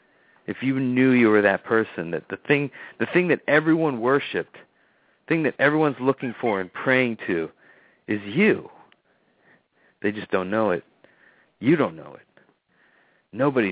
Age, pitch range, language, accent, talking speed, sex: 50-69, 100-130 Hz, English, American, 155 wpm, male